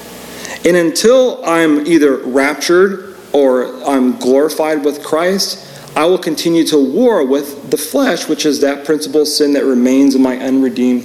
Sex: male